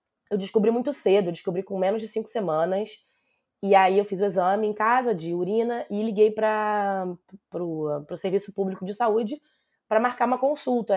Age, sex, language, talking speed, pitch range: 20-39, female, Portuguese, 180 wpm, 195-245 Hz